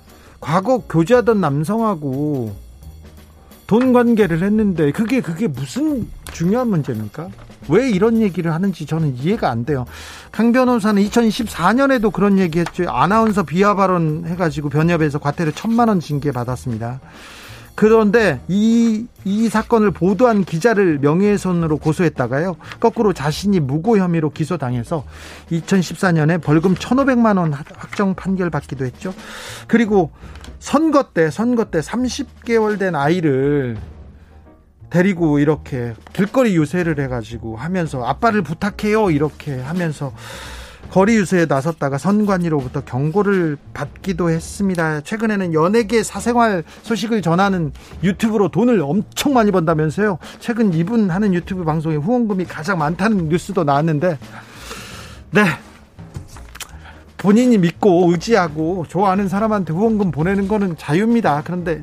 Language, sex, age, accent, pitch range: Korean, male, 40-59, native, 145-210 Hz